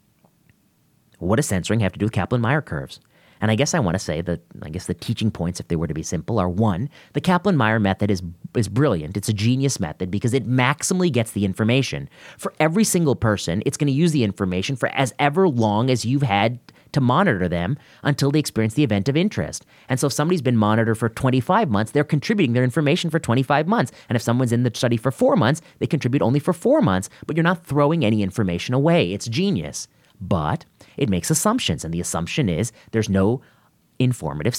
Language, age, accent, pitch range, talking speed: English, 30-49, American, 100-145 Hz, 215 wpm